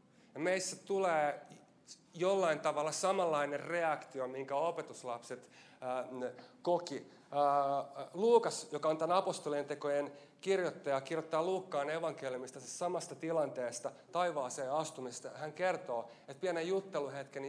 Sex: male